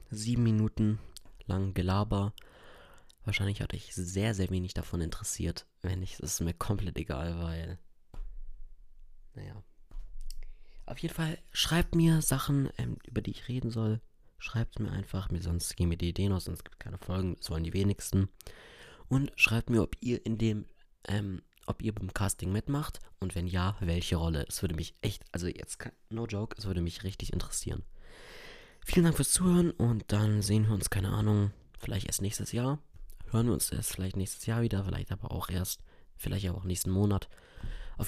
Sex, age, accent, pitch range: male, 20-39, German, 90-115 Hz